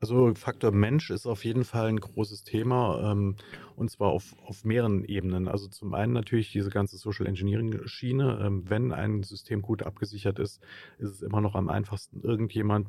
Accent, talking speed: German, 175 wpm